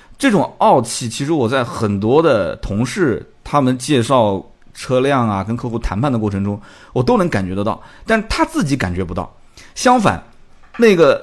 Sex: male